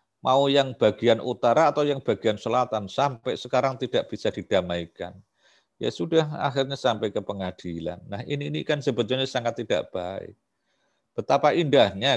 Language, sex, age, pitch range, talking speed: Indonesian, male, 50-69, 110-155 Hz, 145 wpm